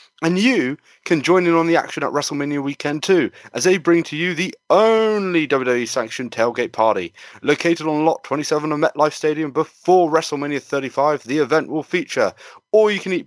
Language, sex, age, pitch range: English, male, 30-49, 130-165 Hz